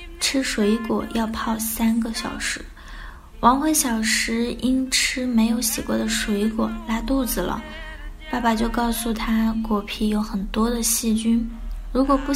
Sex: female